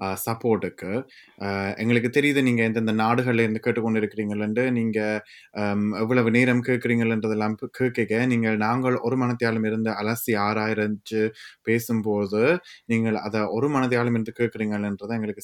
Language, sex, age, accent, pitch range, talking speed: Tamil, male, 20-39, native, 105-125 Hz, 115 wpm